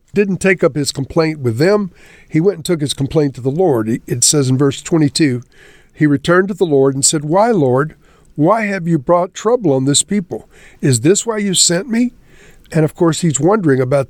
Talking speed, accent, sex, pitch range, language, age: 215 wpm, American, male, 135-170 Hz, English, 50-69